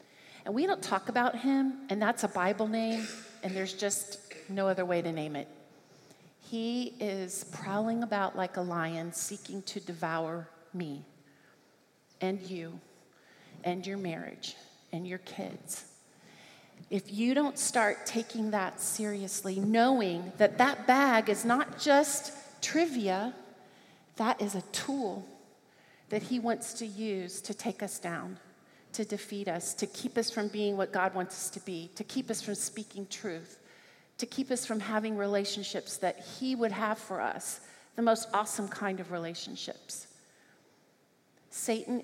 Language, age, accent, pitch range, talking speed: English, 40-59, American, 185-230 Hz, 150 wpm